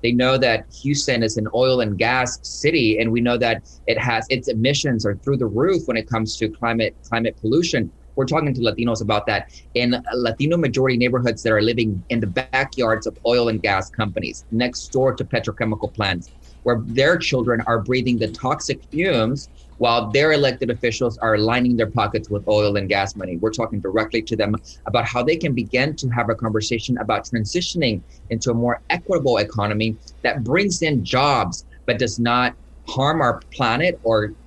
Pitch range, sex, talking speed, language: 110-125 Hz, male, 190 wpm, English